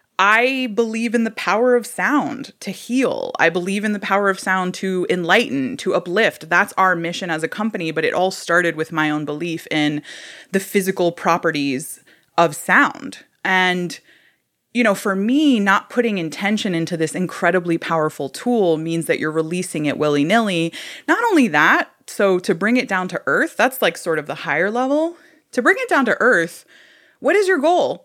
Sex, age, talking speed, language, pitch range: female, 20-39, 185 wpm, English, 165-235 Hz